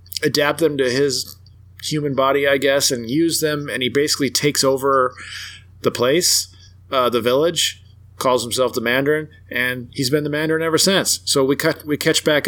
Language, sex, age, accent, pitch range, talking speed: English, male, 30-49, American, 110-140 Hz, 185 wpm